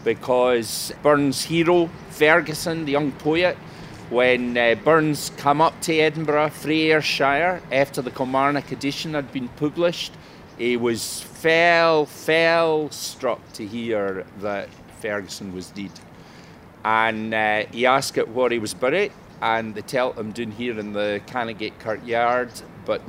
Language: English